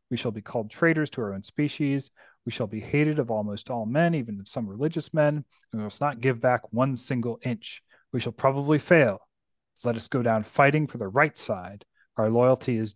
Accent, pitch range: American, 110-135 Hz